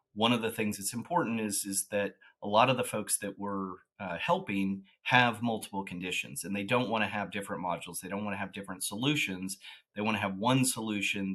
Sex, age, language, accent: male, 30-49, English, American